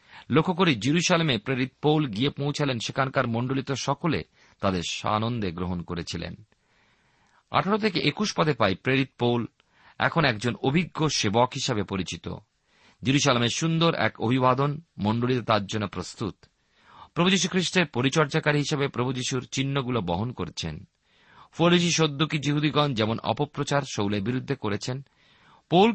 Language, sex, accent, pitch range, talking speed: Bengali, male, native, 105-150 Hz, 120 wpm